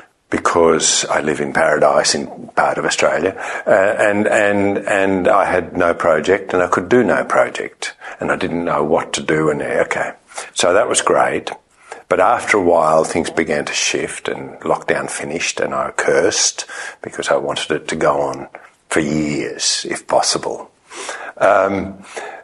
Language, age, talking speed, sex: English, 60-79, 170 wpm, male